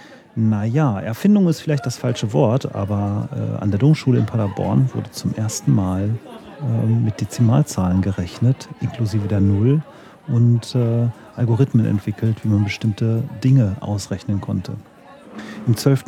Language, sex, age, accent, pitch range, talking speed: German, male, 40-59, German, 105-135 Hz, 140 wpm